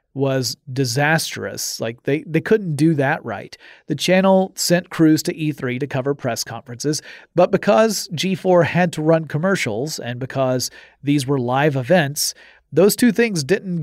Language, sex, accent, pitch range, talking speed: English, male, American, 130-165 Hz, 155 wpm